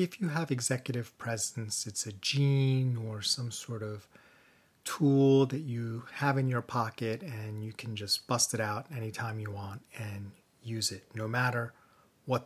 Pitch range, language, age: 110-140 Hz, English, 30-49